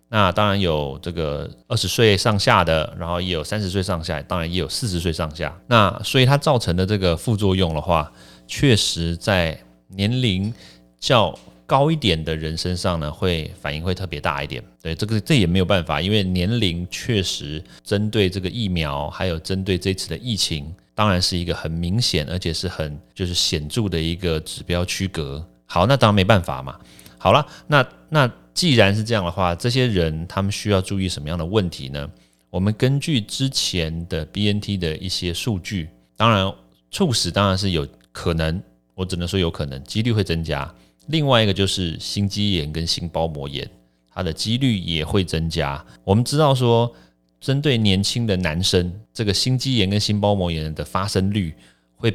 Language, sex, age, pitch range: Chinese, male, 30-49, 80-100 Hz